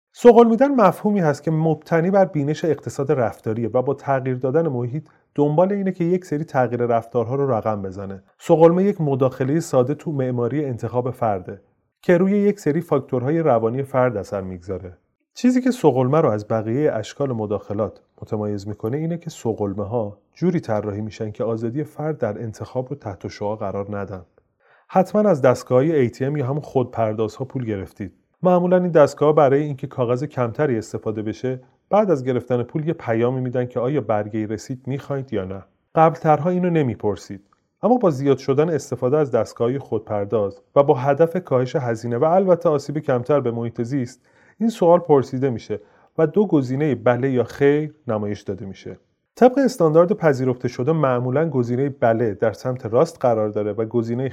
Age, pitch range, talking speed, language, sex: 30-49, 115-155 Hz, 165 wpm, Persian, male